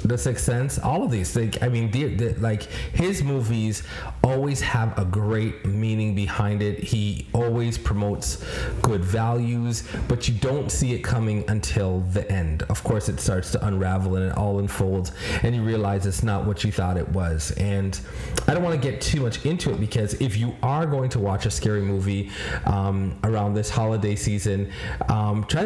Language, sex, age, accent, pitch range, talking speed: English, male, 30-49, American, 100-120 Hz, 190 wpm